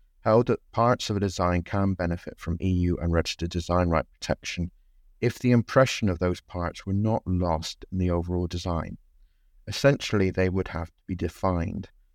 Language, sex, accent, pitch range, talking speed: English, male, British, 85-100 Hz, 170 wpm